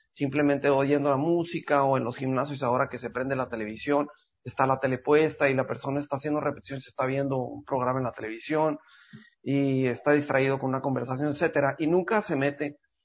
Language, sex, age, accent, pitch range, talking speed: Spanish, male, 40-59, Mexican, 135-155 Hz, 195 wpm